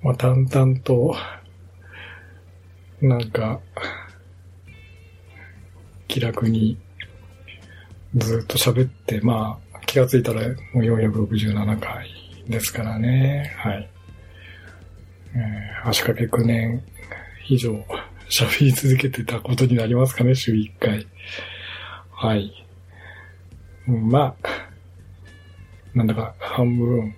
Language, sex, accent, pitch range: Japanese, male, native, 90-125 Hz